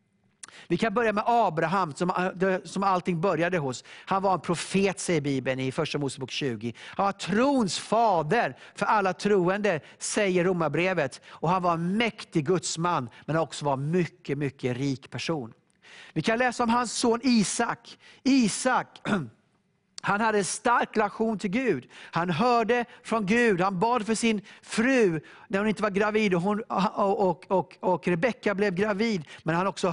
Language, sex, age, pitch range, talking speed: English, male, 50-69, 160-210 Hz, 160 wpm